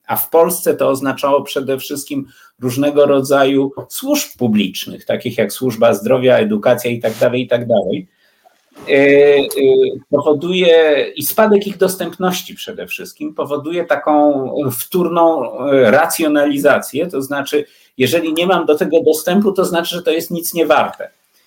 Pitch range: 135-180 Hz